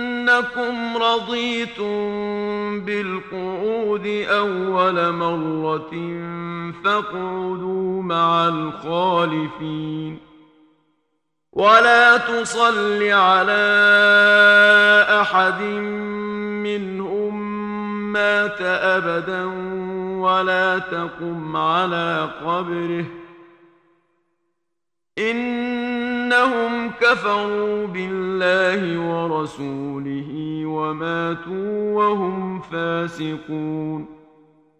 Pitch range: 170-210 Hz